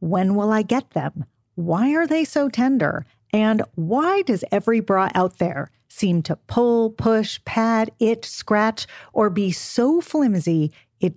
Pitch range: 160-225 Hz